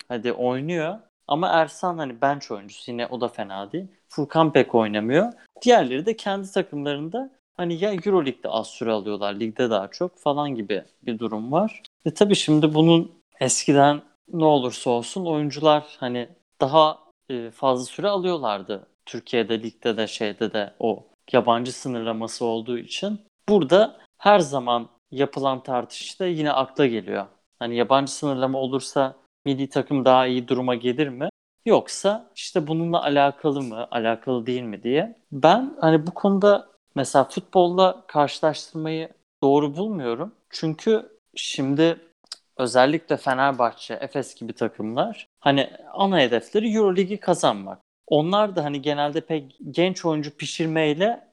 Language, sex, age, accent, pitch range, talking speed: Turkish, male, 30-49, native, 125-175 Hz, 135 wpm